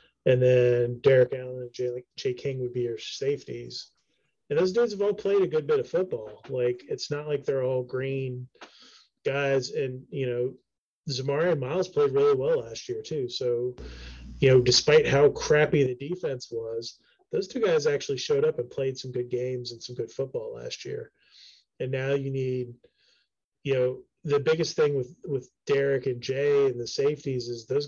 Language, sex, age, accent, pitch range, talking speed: English, male, 30-49, American, 125-155 Hz, 190 wpm